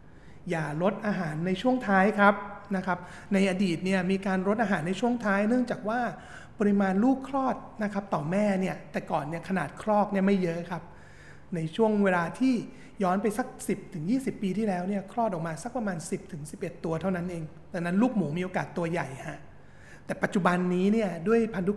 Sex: male